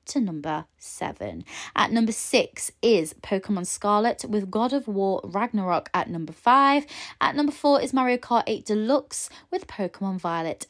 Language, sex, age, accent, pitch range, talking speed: English, female, 20-39, British, 180-265 Hz, 155 wpm